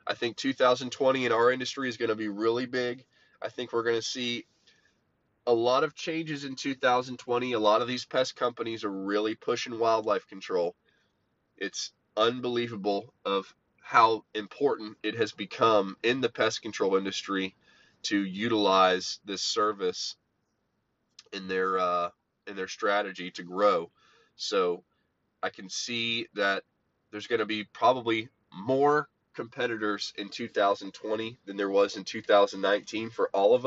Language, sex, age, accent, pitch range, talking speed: English, male, 20-39, American, 105-125 Hz, 145 wpm